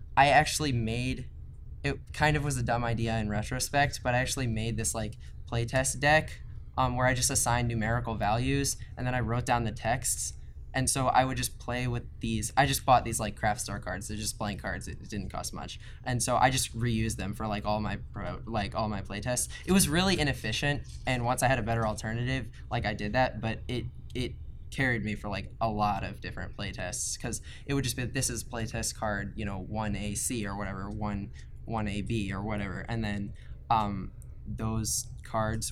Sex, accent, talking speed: male, American, 210 wpm